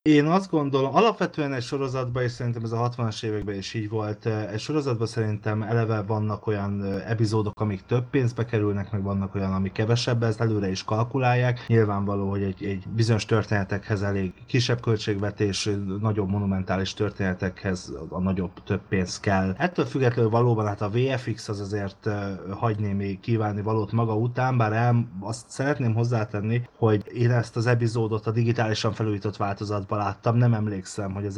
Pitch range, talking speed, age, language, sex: 100-115 Hz, 160 wpm, 30-49, Hungarian, male